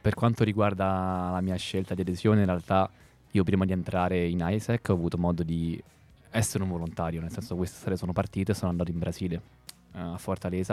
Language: Italian